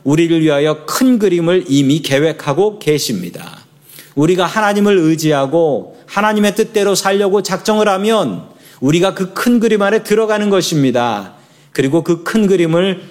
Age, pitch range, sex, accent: 40-59, 140-190 Hz, male, native